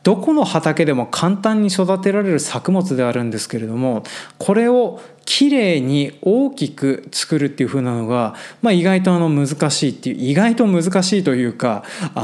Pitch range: 130-190 Hz